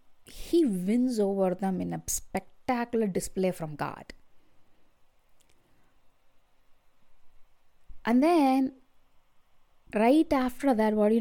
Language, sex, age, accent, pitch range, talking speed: English, female, 20-39, Indian, 190-265 Hz, 95 wpm